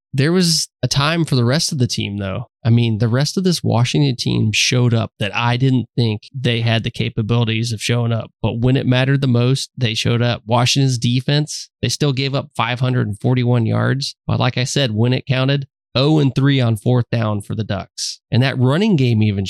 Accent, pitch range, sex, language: American, 115-135 Hz, male, English